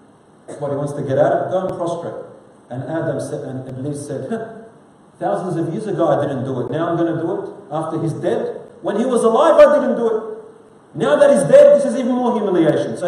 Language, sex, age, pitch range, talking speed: English, male, 40-59, 145-200 Hz, 240 wpm